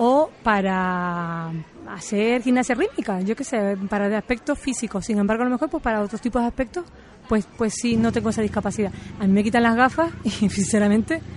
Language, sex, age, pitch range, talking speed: Spanish, female, 30-49, 215-275 Hz, 195 wpm